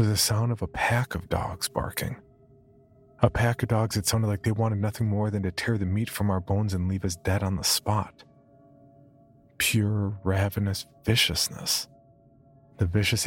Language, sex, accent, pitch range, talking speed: English, male, American, 90-110 Hz, 180 wpm